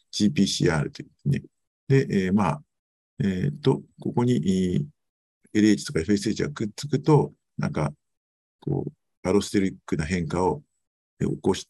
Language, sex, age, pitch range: Japanese, male, 50-69, 95-150 Hz